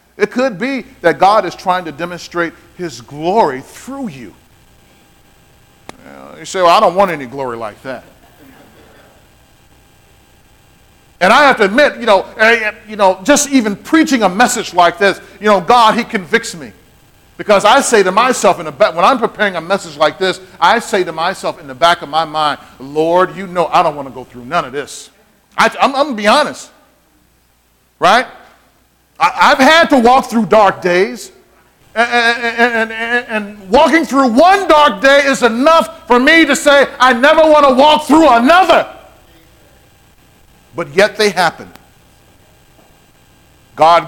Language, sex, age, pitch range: English, male, 40-59, 170-260 Hz